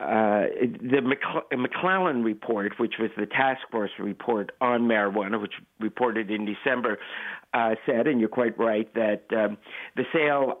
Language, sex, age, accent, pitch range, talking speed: English, male, 60-79, American, 105-125 Hz, 145 wpm